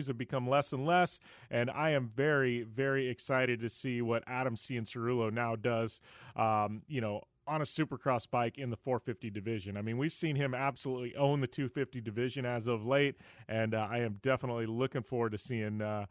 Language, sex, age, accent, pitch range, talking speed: English, male, 30-49, American, 120-165 Hz, 195 wpm